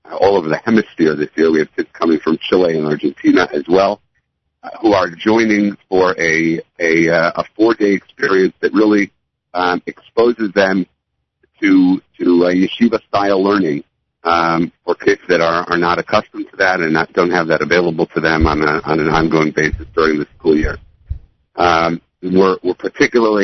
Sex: male